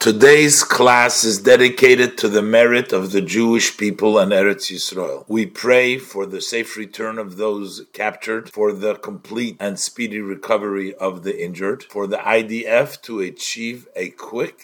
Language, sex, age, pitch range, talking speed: English, male, 50-69, 100-130 Hz, 160 wpm